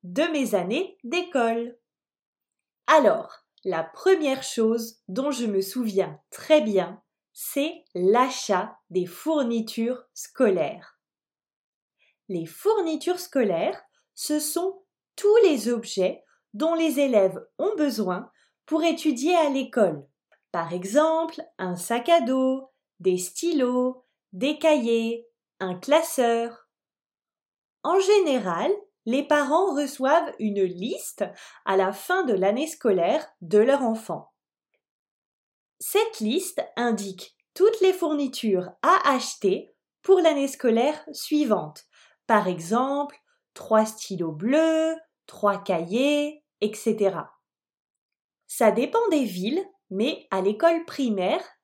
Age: 20-39